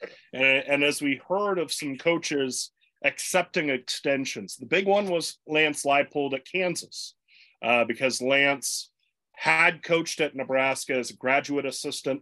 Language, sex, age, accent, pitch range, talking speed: English, male, 30-49, American, 125-155 Hz, 140 wpm